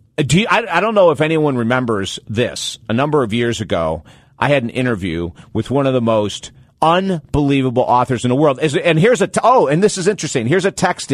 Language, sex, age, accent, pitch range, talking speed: English, male, 50-69, American, 130-165 Hz, 225 wpm